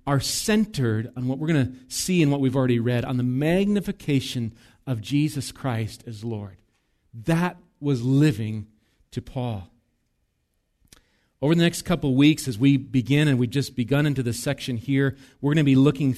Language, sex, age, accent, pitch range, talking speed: English, male, 40-59, American, 125-150 Hz, 180 wpm